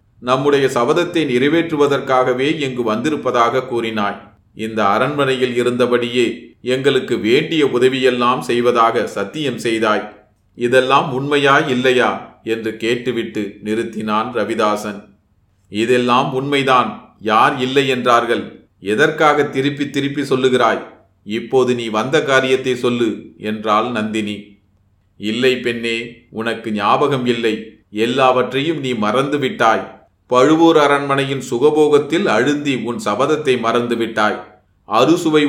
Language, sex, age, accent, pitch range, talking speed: Tamil, male, 30-49, native, 110-135 Hz, 95 wpm